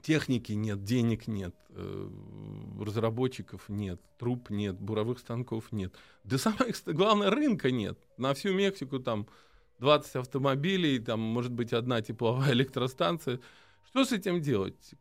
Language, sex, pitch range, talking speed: Russian, male, 125-200 Hz, 130 wpm